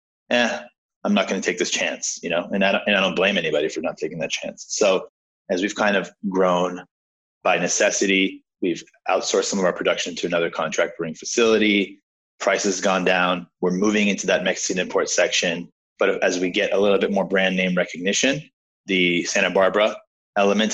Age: 20-39